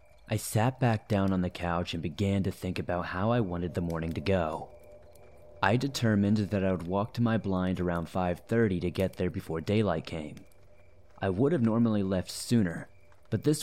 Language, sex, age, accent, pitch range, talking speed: English, male, 30-49, American, 90-115 Hz, 195 wpm